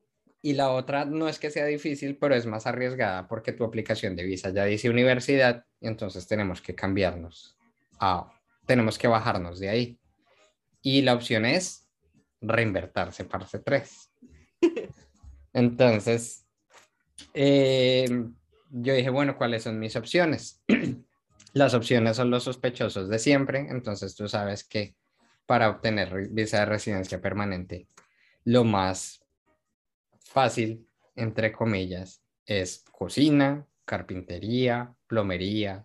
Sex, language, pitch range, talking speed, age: male, Spanish, 95-125 Hz, 120 wpm, 20-39